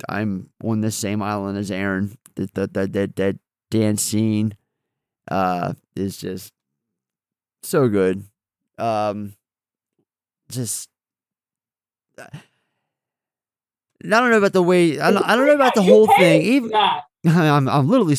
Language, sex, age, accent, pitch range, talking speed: English, male, 30-49, American, 105-145 Hz, 130 wpm